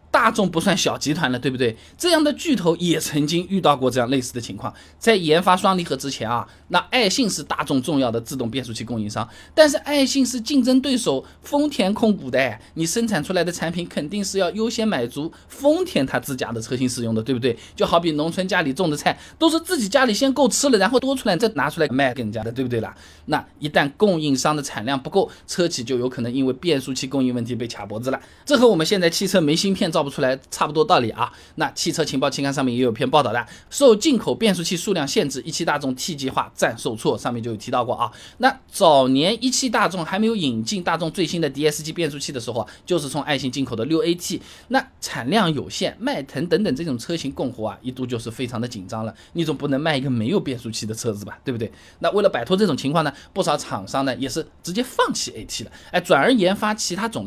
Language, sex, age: Chinese, male, 20-39